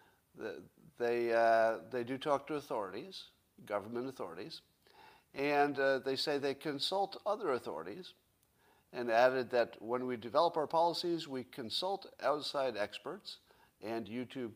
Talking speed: 130 wpm